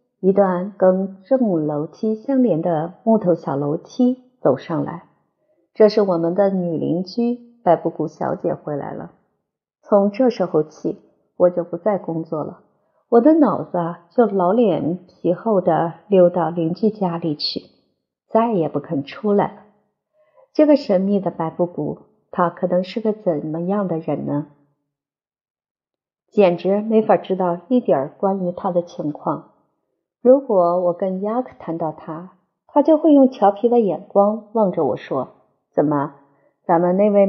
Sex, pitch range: female, 170-220 Hz